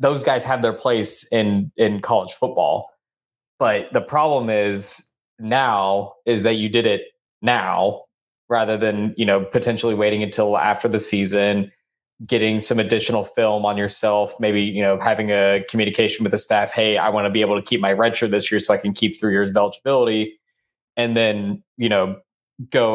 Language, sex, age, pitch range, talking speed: English, male, 20-39, 105-115 Hz, 185 wpm